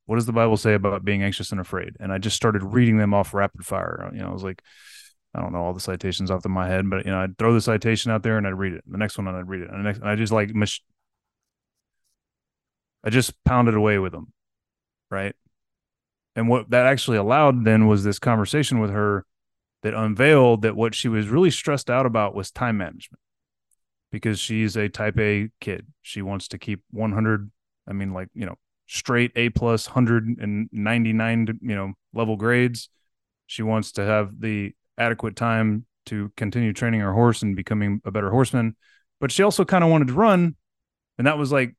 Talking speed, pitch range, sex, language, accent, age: 210 wpm, 100-120 Hz, male, English, American, 30-49